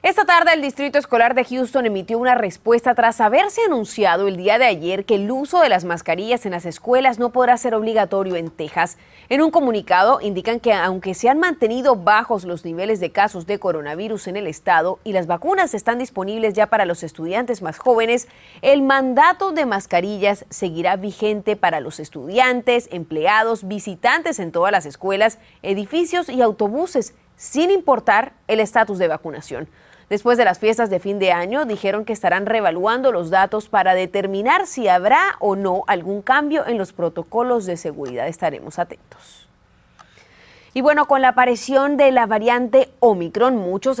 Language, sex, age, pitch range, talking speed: Spanish, female, 30-49, 190-260 Hz, 170 wpm